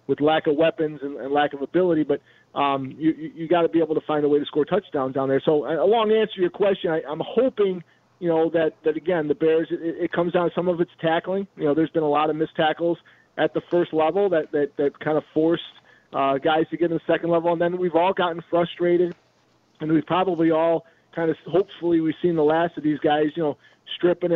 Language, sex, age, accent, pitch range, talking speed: English, male, 40-59, American, 155-175 Hz, 250 wpm